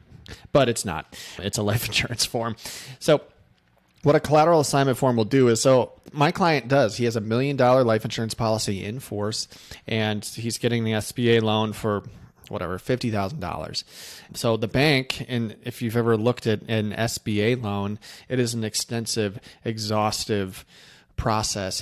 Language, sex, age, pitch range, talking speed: English, male, 30-49, 105-125 Hz, 155 wpm